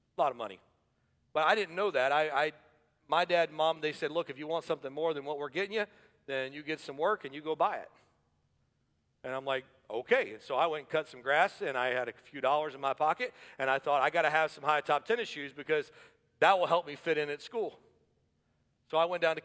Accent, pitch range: American, 140-185 Hz